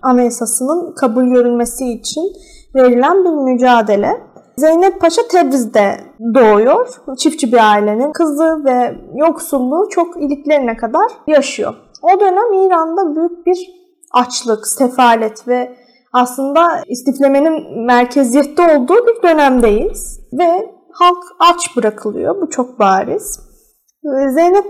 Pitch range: 245-345 Hz